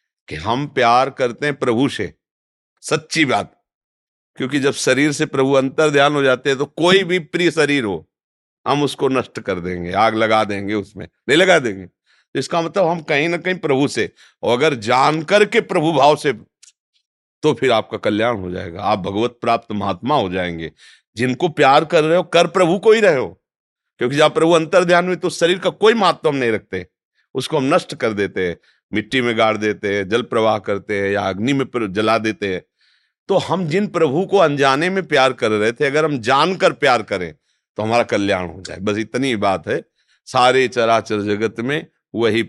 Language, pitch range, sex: Hindi, 100-155 Hz, male